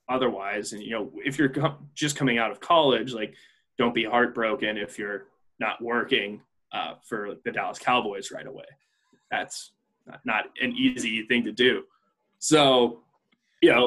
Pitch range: 115-140 Hz